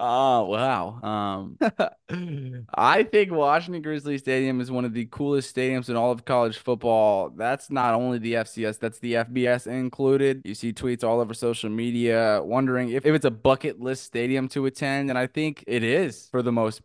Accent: American